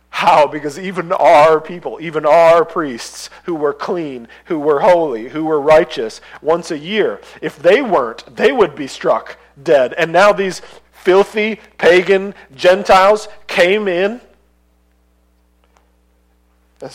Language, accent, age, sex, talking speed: English, American, 40-59, male, 130 wpm